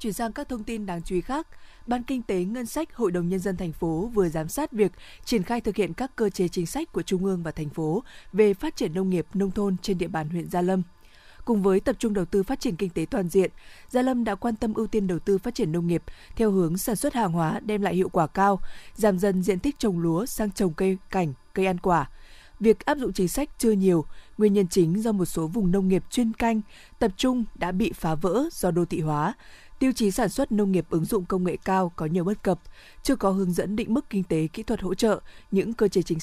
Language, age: Vietnamese, 20-39